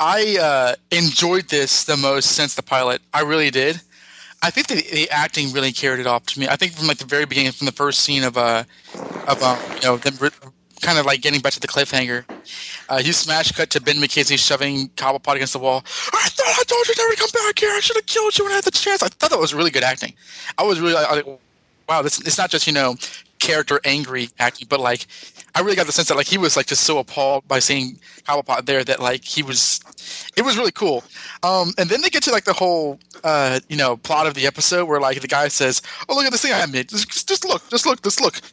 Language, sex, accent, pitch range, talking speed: English, male, American, 135-190 Hz, 260 wpm